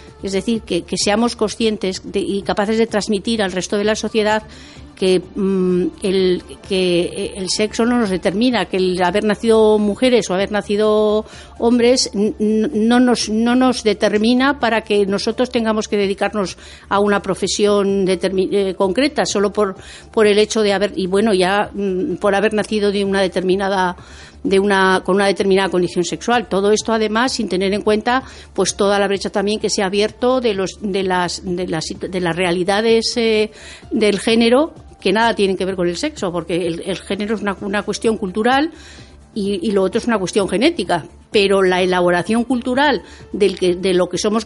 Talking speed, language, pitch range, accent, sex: 190 wpm, Spanish, 190-225 Hz, Spanish, female